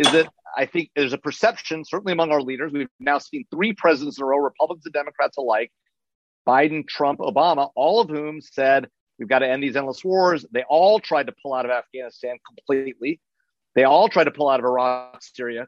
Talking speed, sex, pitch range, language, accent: 210 wpm, male, 130-160 Hz, English, American